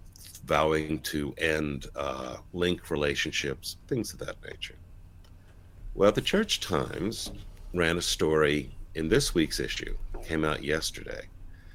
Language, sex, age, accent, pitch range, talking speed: English, male, 60-79, American, 75-90 Hz, 125 wpm